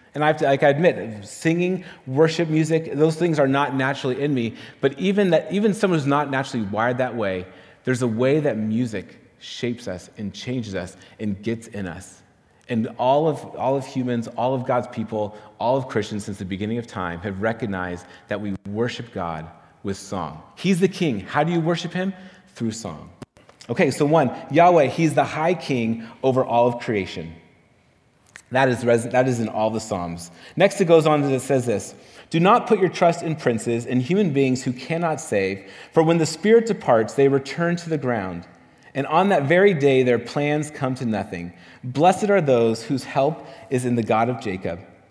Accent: American